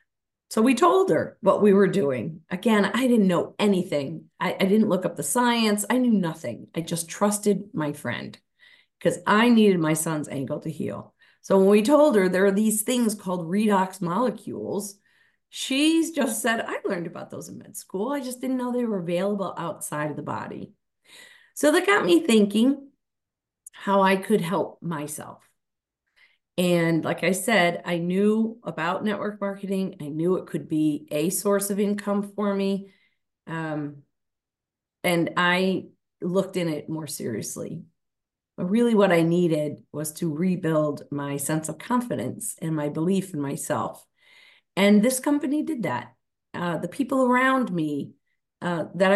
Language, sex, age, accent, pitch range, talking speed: English, female, 40-59, American, 165-235 Hz, 165 wpm